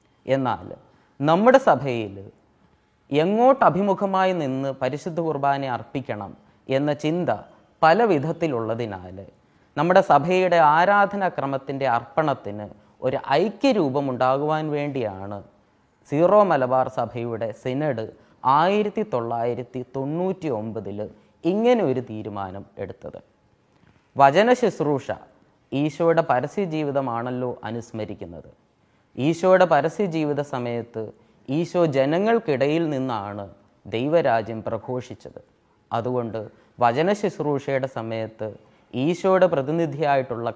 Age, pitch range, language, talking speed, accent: 20-39, 110-160 Hz, Malayalam, 80 wpm, native